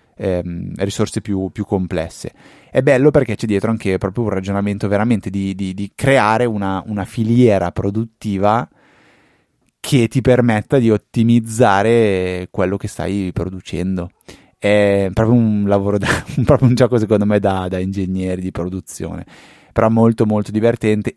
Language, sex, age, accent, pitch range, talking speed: Italian, male, 20-39, native, 95-115 Hz, 145 wpm